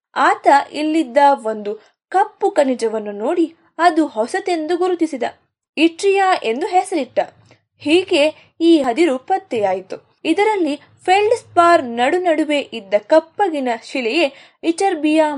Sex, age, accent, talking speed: female, 20-39, native, 100 wpm